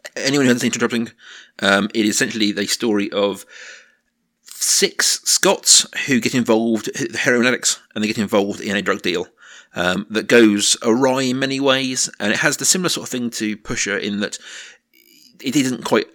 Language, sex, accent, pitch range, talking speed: English, male, British, 105-130 Hz, 175 wpm